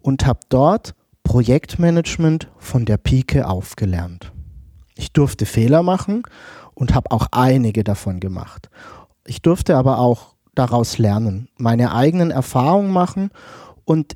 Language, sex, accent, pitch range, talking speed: German, male, German, 115-170 Hz, 125 wpm